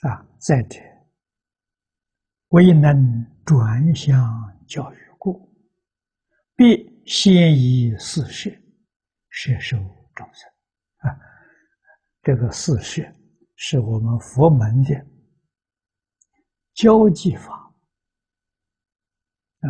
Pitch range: 110-155 Hz